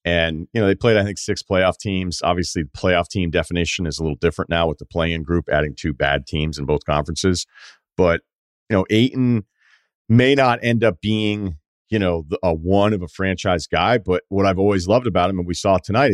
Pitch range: 85-115 Hz